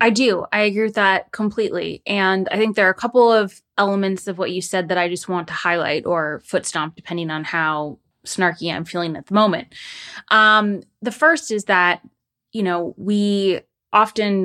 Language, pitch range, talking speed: English, 175-215 Hz, 190 wpm